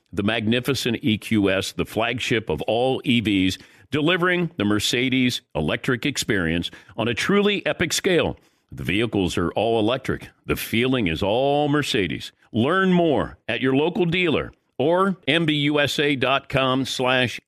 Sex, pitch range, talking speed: male, 90-130 Hz, 125 wpm